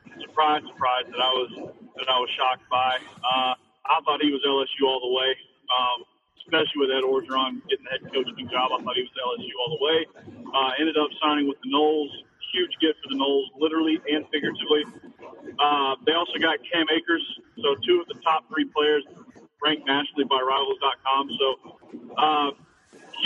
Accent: American